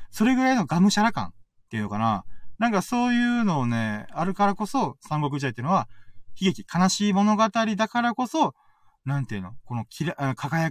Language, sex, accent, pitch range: Japanese, male, native, 125-185 Hz